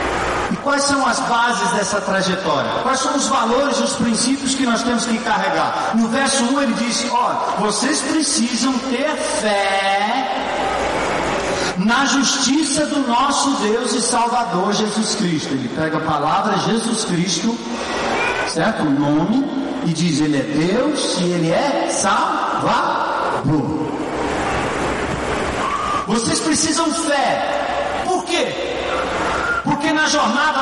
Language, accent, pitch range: Portuguese, Brazilian, 210-280 Hz